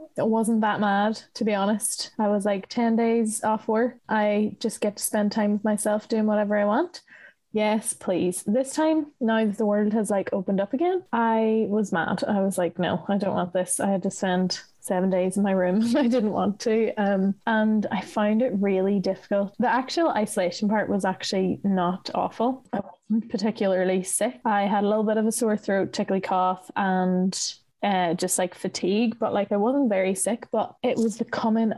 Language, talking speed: English, 205 wpm